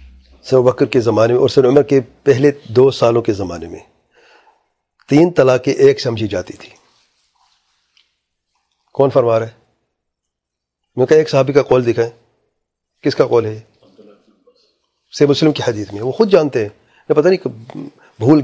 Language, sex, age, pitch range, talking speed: English, male, 40-59, 110-145 Hz, 155 wpm